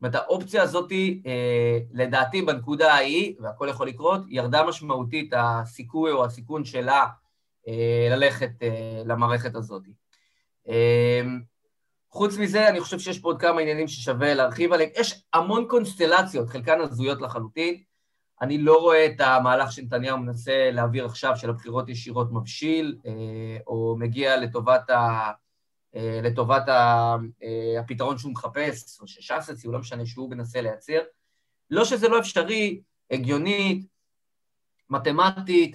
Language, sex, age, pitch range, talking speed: Hebrew, male, 30-49, 120-160 Hz, 125 wpm